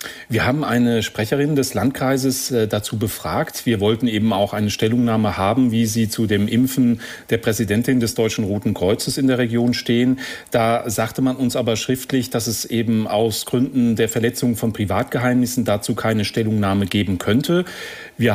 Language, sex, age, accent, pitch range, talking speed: German, male, 40-59, German, 110-130 Hz, 165 wpm